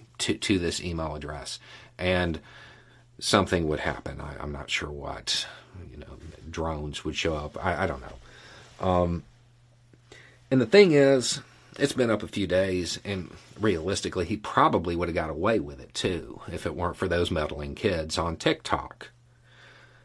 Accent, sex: American, male